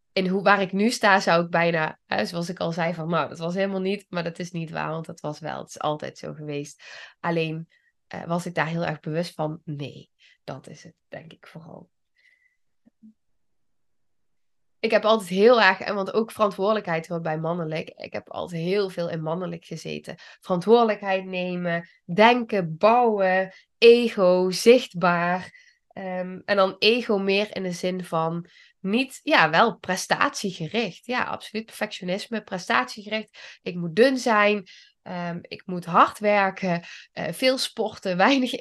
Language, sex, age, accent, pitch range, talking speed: Dutch, female, 20-39, Dutch, 170-220 Hz, 165 wpm